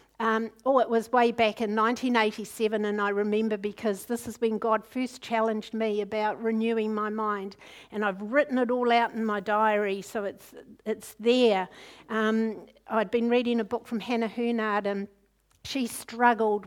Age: 60-79